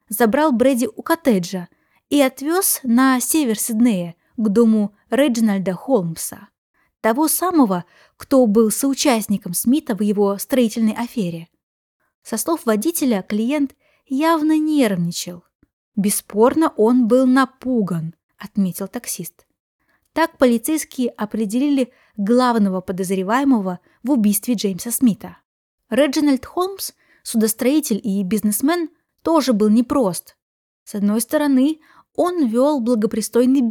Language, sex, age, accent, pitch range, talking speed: Russian, female, 20-39, native, 210-280 Hz, 105 wpm